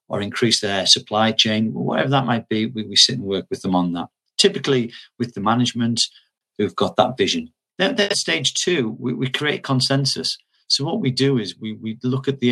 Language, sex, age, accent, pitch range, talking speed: English, male, 40-59, British, 110-135 Hz, 210 wpm